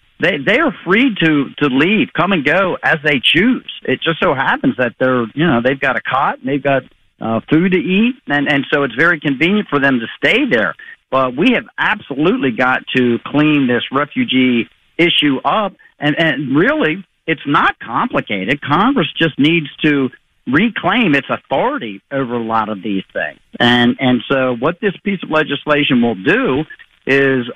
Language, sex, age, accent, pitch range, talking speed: English, male, 50-69, American, 125-155 Hz, 180 wpm